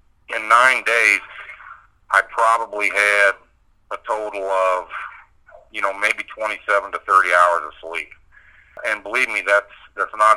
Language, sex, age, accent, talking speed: English, male, 50-69, American, 140 wpm